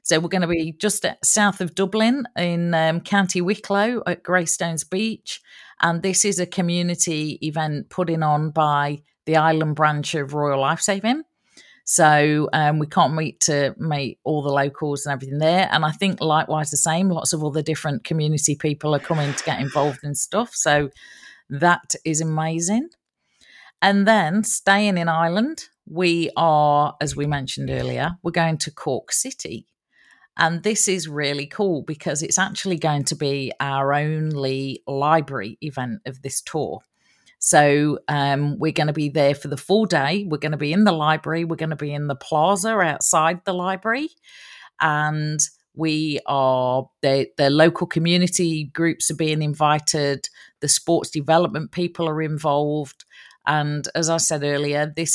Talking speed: 165 wpm